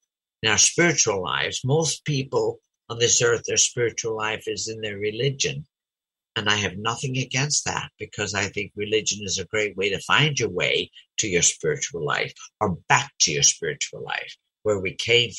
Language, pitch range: English, 105-140 Hz